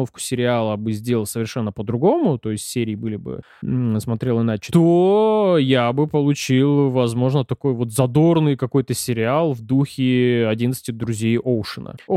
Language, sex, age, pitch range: Russian, male, 20-39, 120-155 Hz